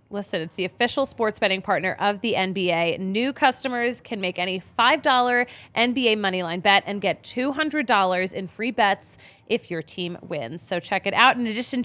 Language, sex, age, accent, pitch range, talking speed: English, female, 20-39, American, 190-255 Hz, 175 wpm